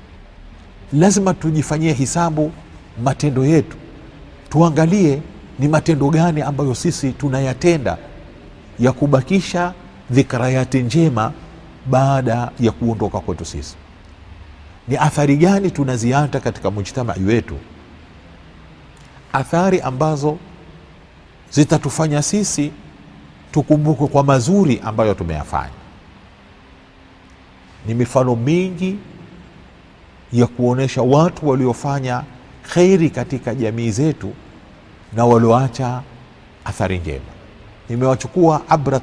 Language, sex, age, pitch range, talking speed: Swahili, male, 50-69, 100-150 Hz, 85 wpm